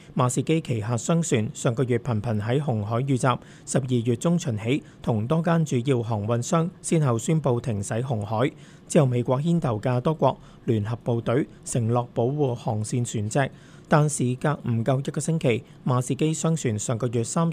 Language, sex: Chinese, male